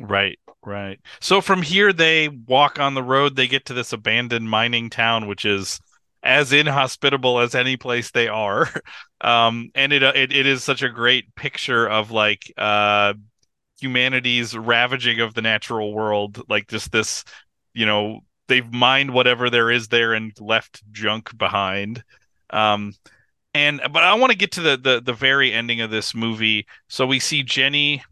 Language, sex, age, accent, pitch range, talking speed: English, male, 30-49, American, 110-130 Hz, 170 wpm